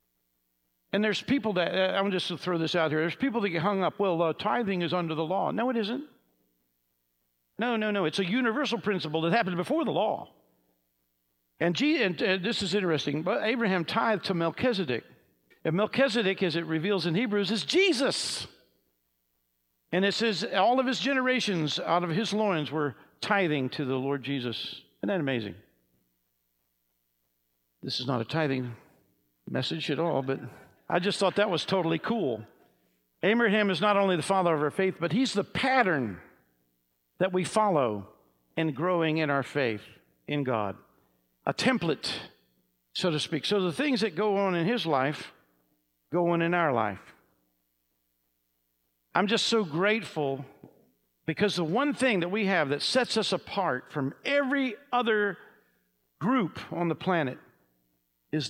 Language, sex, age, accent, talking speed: English, male, 60-79, American, 165 wpm